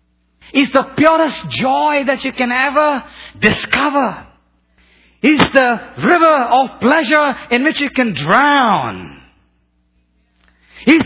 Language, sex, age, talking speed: English, male, 50-69, 110 wpm